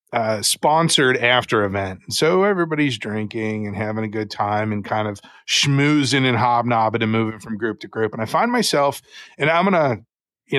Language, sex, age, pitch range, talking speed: English, male, 30-49, 110-140 Hz, 180 wpm